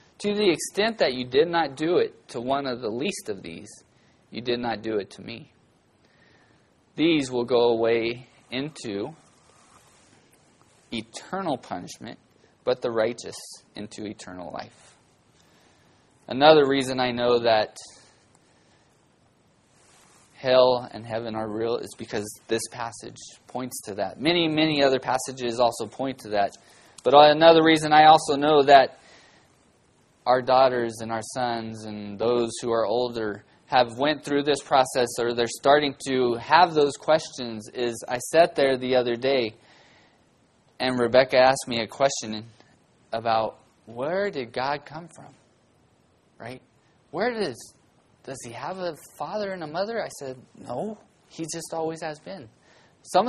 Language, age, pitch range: English, 20-39, 115-160 Hz